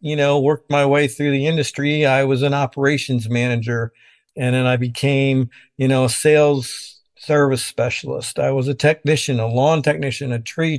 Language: English